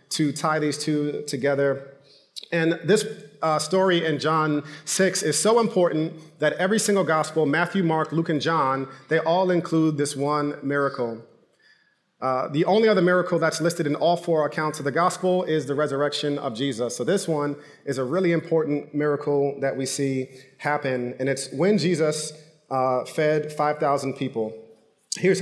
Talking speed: 165 wpm